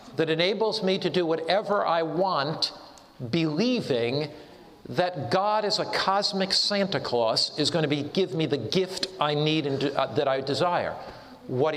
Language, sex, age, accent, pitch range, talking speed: English, male, 50-69, American, 155-205 Hz, 170 wpm